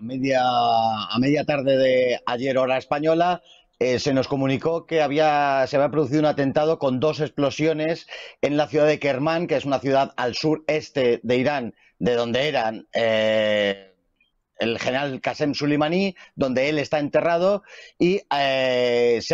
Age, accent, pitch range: 40-59, Spanish, 125-155 Hz